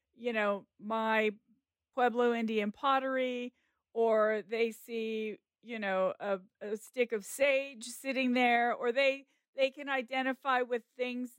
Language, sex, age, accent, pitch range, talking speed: English, female, 50-69, American, 205-255 Hz, 130 wpm